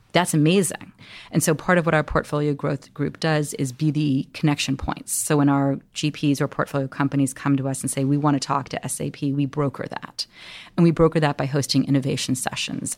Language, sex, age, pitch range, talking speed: English, female, 30-49, 140-160 Hz, 215 wpm